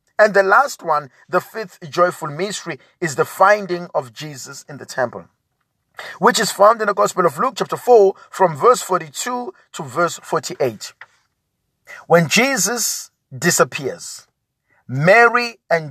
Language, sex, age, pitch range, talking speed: English, male, 50-69, 160-205 Hz, 140 wpm